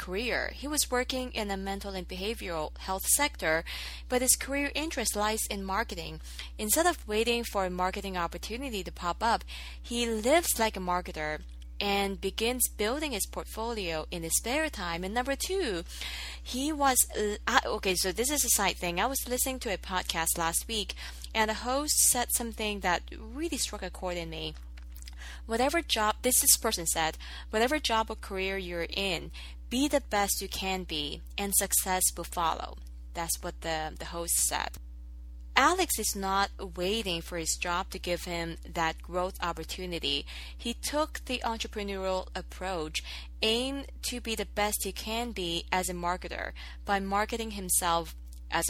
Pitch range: 165-230 Hz